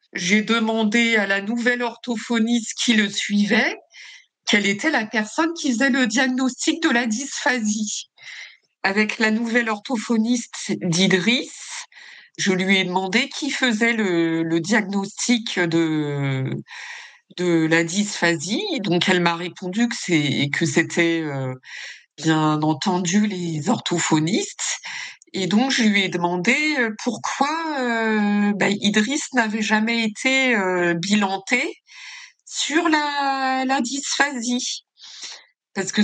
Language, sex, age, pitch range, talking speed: French, female, 50-69, 195-265 Hz, 120 wpm